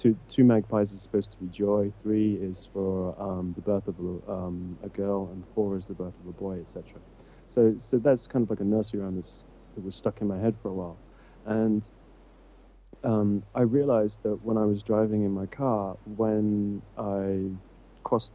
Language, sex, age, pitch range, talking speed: English, male, 30-49, 95-110 Hz, 200 wpm